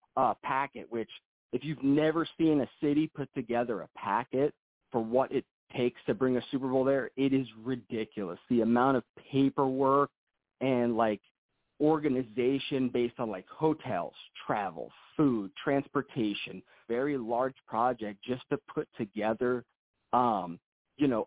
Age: 40-59